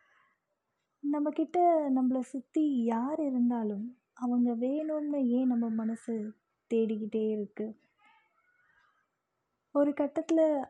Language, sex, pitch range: Tamil, female, 225-265 Hz